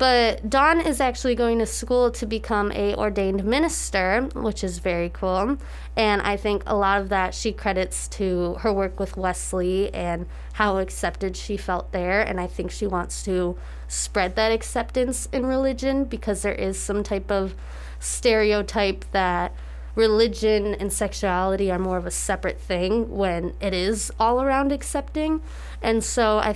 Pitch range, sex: 185-230 Hz, female